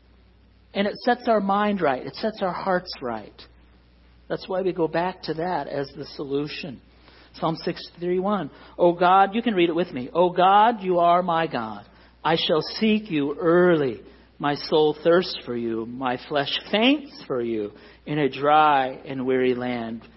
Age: 50-69